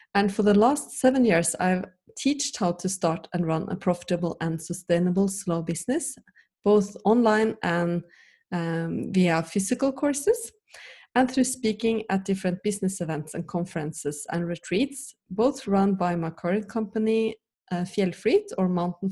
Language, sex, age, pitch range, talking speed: English, female, 30-49, 175-220 Hz, 150 wpm